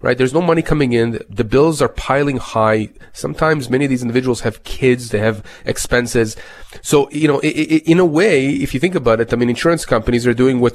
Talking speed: 220 wpm